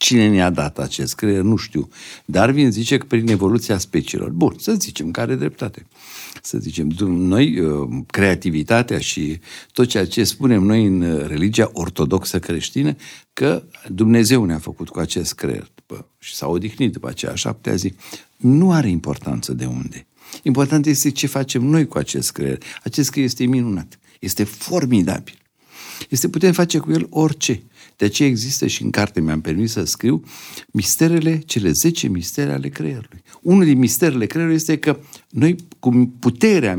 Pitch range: 95-140 Hz